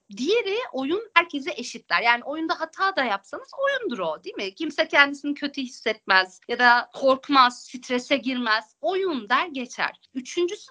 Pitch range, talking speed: 225-315 Hz, 145 wpm